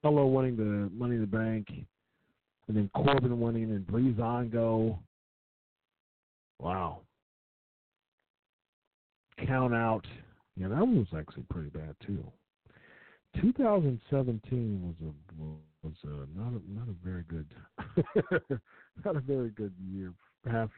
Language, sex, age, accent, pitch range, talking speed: English, male, 50-69, American, 95-120 Hz, 120 wpm